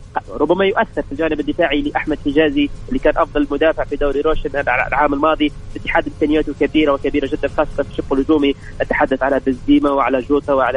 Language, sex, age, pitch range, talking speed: English, male, 30-49, 145-180 Hz, 180 wpm